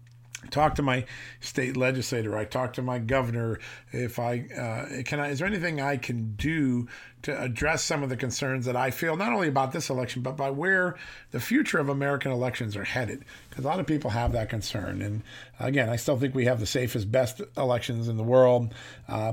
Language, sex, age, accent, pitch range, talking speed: English, male, 40-59, American, 115-130 Hz, 210 wpm